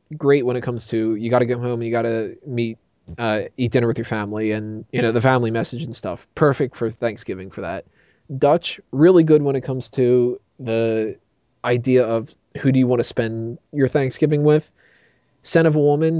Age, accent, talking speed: 20-39, American, 205 wpm